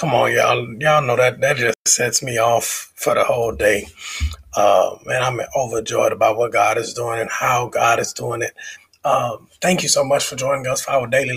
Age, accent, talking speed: 30-49, American, 215 wpm